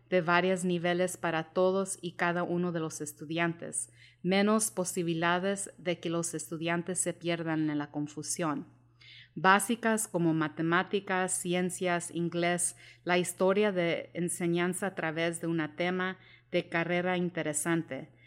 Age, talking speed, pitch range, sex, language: 30-49, 130 wpm, 165-190 Hz, female, English